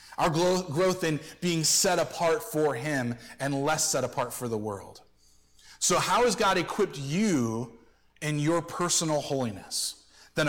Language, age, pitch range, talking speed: English, 30-49, 130-180 Hz, 150 wpm